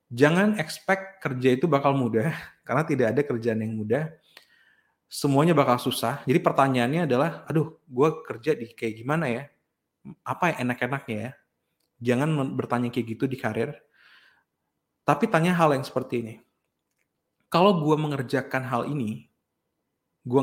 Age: 30-49